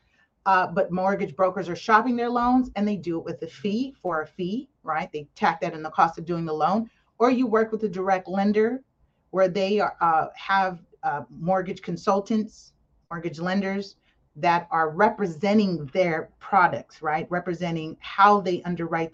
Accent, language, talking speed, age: American, English, 170 wpm, 30-49